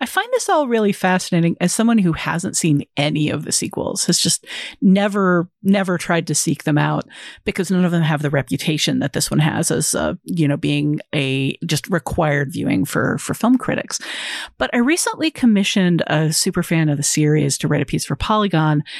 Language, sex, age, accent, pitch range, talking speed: English, female, 40-59, American, 155-210 Hz, 200 wpm